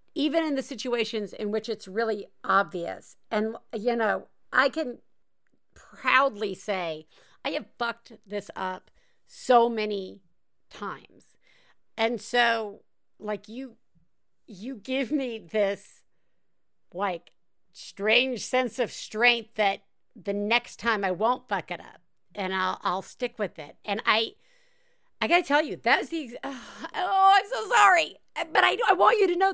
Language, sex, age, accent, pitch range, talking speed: English, female, 50-69, American, 220-295 Hz, 145 wpm